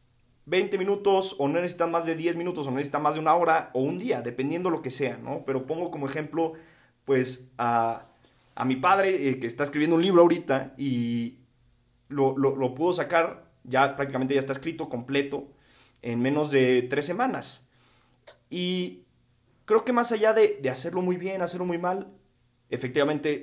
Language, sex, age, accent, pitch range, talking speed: Spanish, male, 30-49, Mexican, 125-165 Hz, 180 wpm